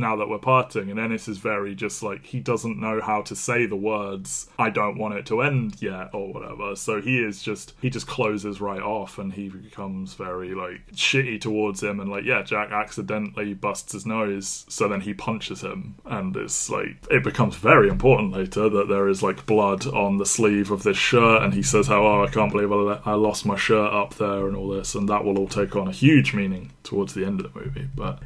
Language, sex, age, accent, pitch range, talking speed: English, male, 20-39, British, 100-120 Hz, 230 wpm